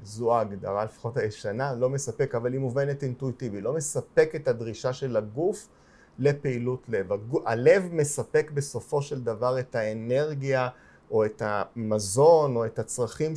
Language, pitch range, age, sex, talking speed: Hebrew, 110-140 Hz, 30-49, male, 140 wpm